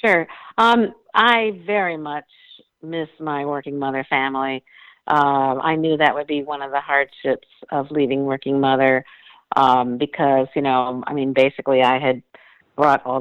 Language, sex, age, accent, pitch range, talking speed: English, female, 50-69, American, 120-150 Hz, 160 wpm